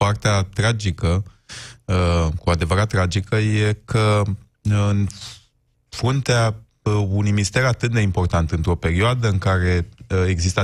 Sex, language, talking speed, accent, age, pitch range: male, Romanian, 105 wpm, native, 20-39, 85-115 Hz